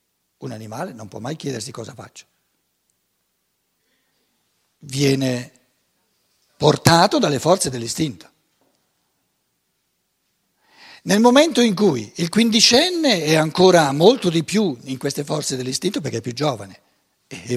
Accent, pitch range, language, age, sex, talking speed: native, 130-190 Hz, Italian, 60-79, male, 115 wpm